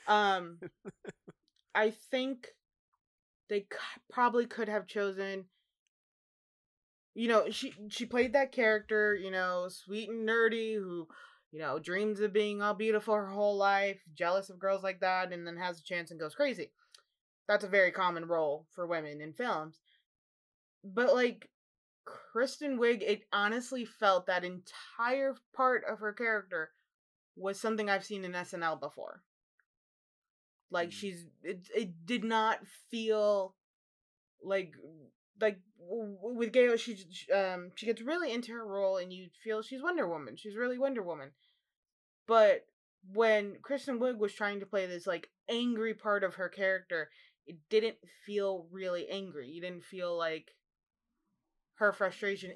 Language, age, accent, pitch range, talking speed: English, 20-39, American, 185-230 Hz, 145 wpm